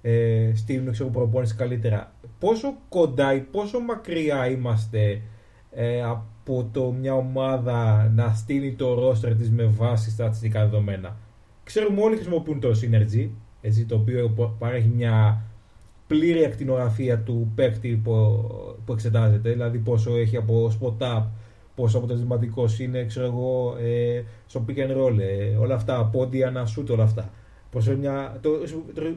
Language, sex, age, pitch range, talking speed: Greek, male, 20-39, 110-140 Hz, 140 wpm